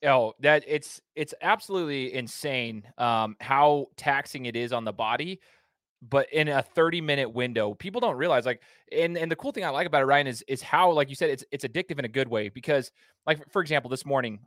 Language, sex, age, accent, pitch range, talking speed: English, male, 20-39, American, 125-150 Hz, 220 wpm